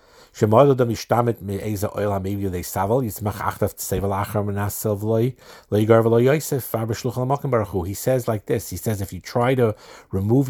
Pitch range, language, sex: 95-125 Hz, English, male